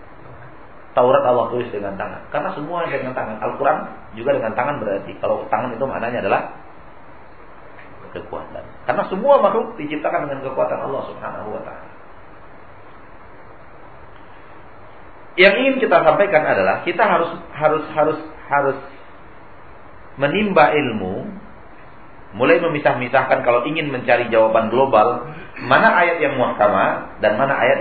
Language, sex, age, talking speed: Malay, male, 40-59, 120 wpm